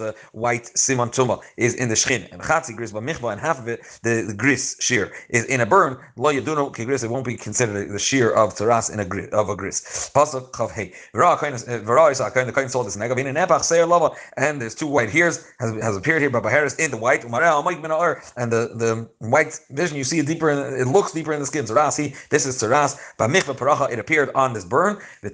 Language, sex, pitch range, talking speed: English, male, 115-145 Hz, 180 wpm